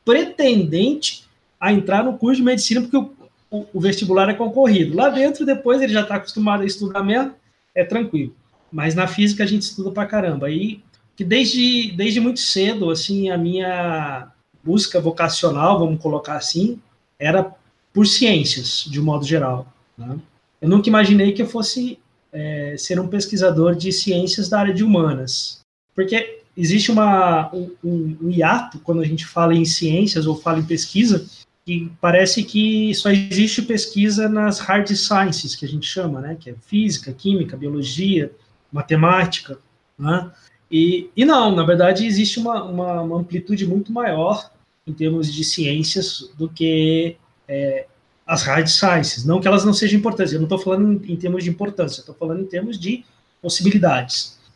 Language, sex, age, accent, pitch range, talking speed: Portuguese, male, 20-39, Brazilian, 160-210 Hz, 165 wpm